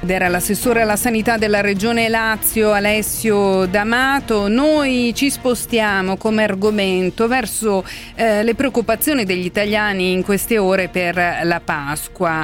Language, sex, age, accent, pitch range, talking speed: Italian, female, 40-59, native, 165-210 Hz, 120 wpm